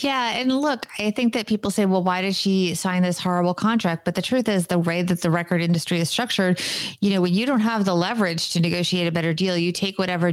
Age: 30-49